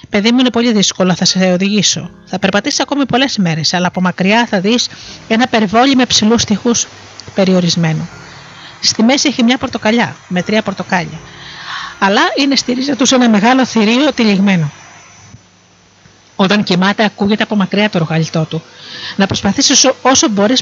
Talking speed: 155 wpm